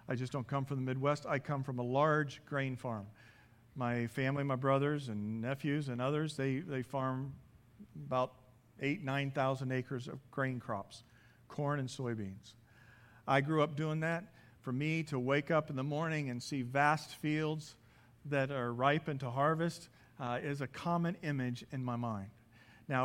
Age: 50-69